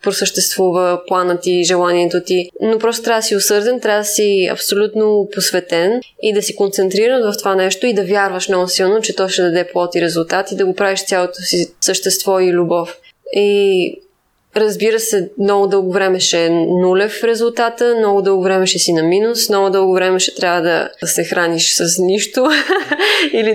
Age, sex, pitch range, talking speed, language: 20-39, female, 185-215 Hz, 195 wpm, Bulgarian